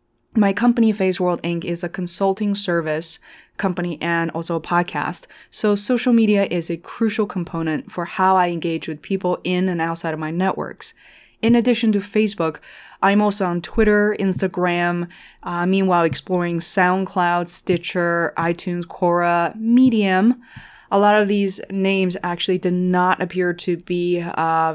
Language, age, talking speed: English, 20-39, 150 wpm